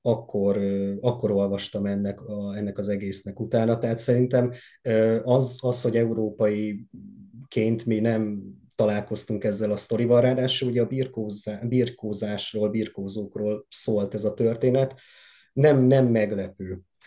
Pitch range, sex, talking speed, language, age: 105-125 Hz, male, 115 wpm, Hungarian, 30-49